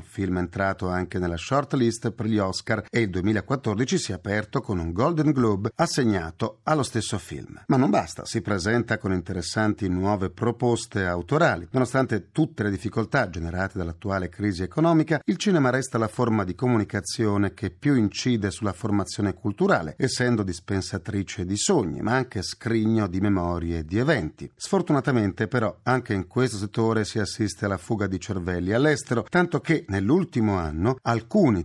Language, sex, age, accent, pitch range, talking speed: Italian, male, 40-59, native, 100-155 Hz, 160 wpm